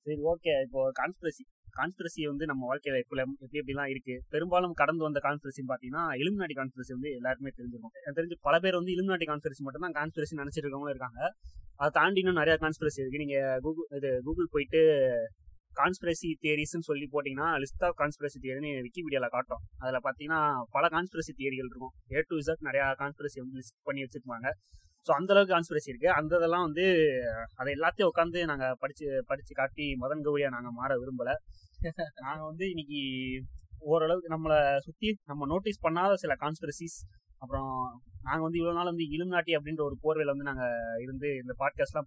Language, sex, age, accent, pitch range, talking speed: Tamil, male, 20-39, native, 130-165 Hz, 160 wpm